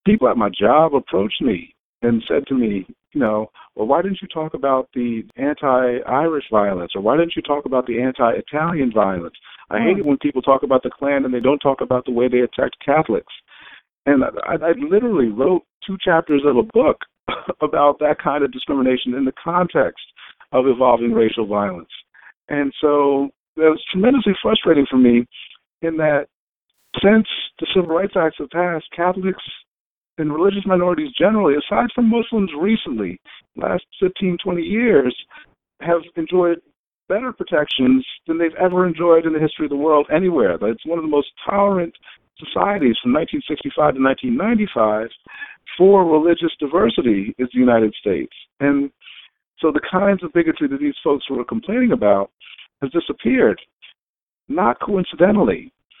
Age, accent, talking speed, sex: 50-69, American, 165 wpm, male